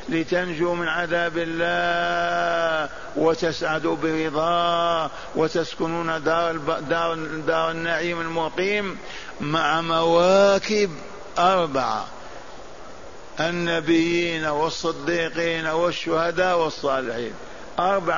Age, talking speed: 50-69, 70 wpm